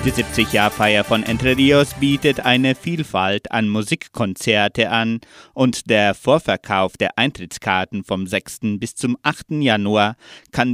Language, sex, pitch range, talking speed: German, male, 105-135 Hz, 130 wpm